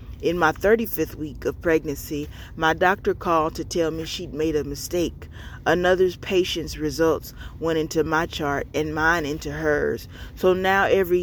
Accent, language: American, English